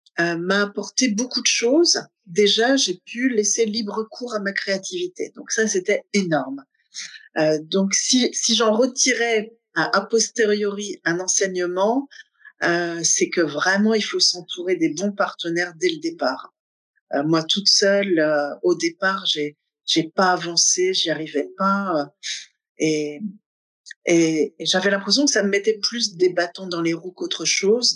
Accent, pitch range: French, 170-225 Hz